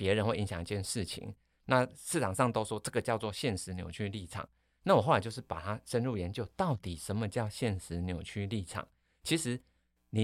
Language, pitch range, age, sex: Chinese, 90-120 Hz, 30-49, male